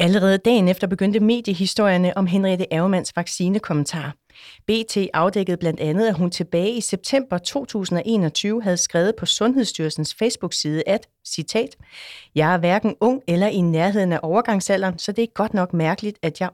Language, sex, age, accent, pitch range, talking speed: Danish, female, 30-49, native, 170-210 Hz, 155 wpm